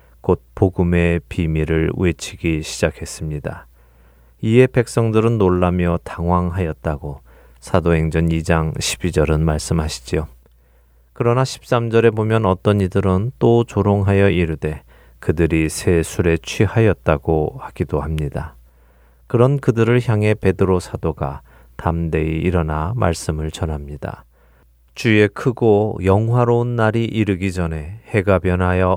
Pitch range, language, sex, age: 80-105 Hz, Korean, male, 30-49